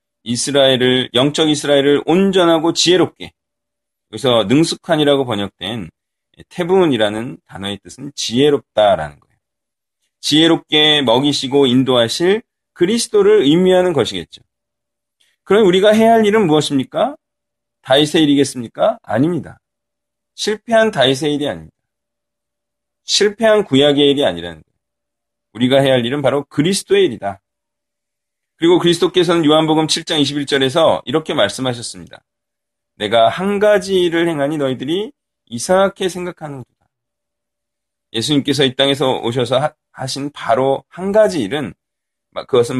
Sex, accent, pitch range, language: male, native, 115-175 Hz, Korean